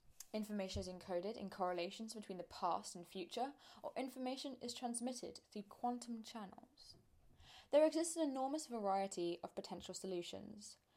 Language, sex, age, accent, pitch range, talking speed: English, female, 10-29, British, 185-250 Hz, 135 wpm